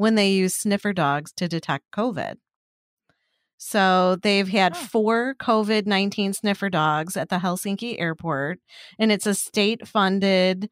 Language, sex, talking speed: English, female, 135 wpm